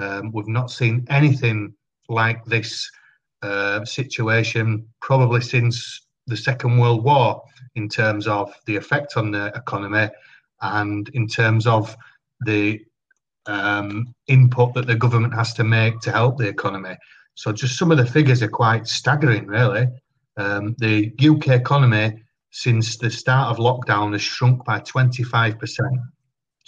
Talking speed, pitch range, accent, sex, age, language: 140 wpm, 110-130 Hz, British, male, 40-59, English